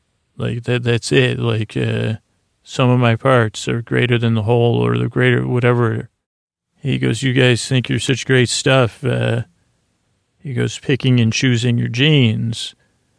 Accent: American